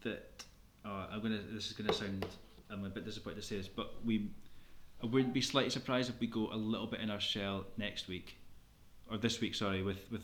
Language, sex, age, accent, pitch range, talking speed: English, male, 20-39, British, 95-115 Hz, 230 wpm